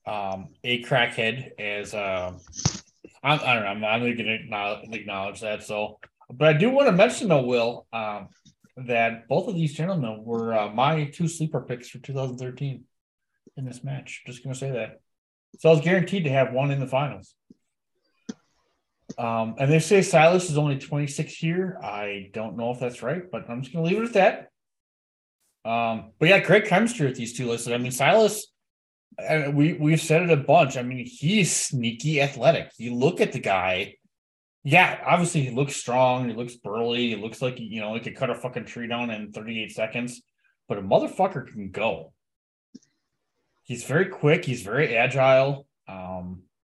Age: 20-39